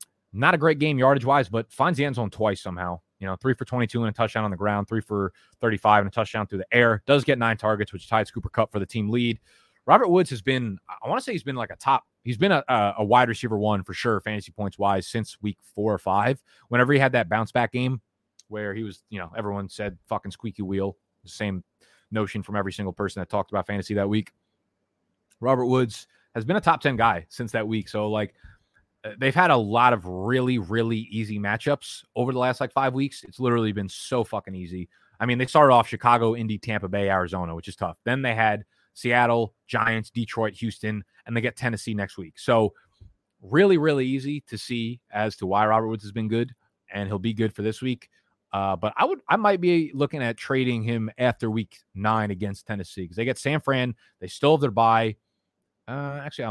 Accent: American